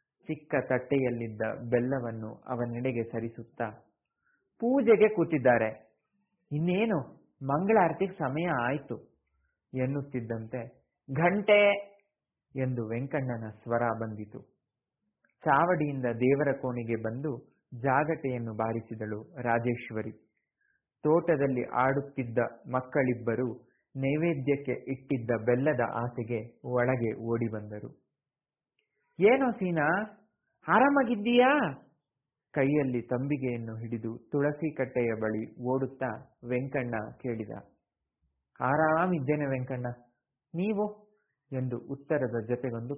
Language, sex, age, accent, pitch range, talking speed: Kannada, male, 30-49, native, 120-160 Hz, 75 wpm